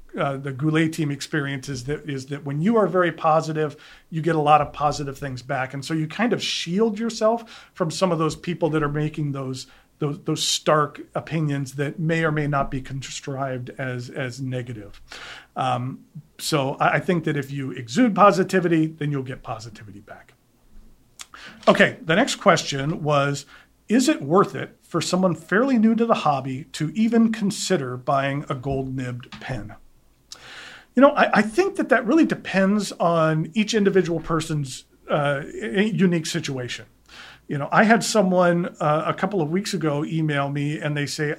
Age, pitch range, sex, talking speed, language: 40-59, 145-190 Hz, male, 180 wpm, English